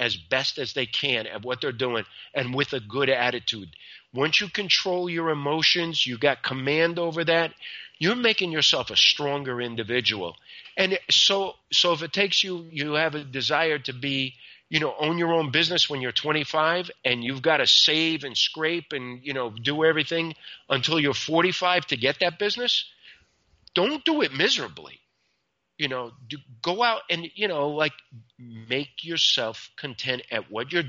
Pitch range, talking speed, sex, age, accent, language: 125-165 Hz, 175 wpm, male, 50-69, American, English